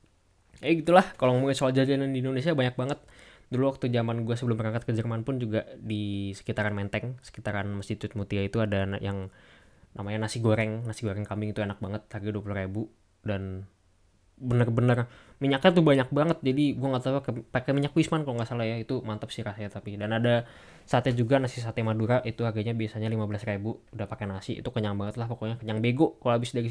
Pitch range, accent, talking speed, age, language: 100-120 Hz, native, 200 wpm, 10-29, Indonesian